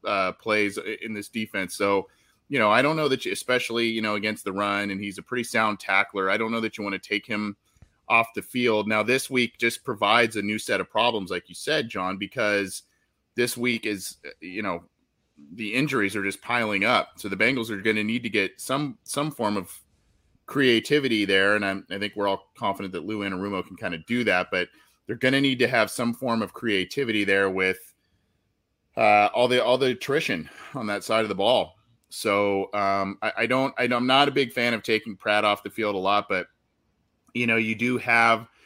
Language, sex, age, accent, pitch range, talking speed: English, male, 30-49, American, 95-115 Hz, 220 wpm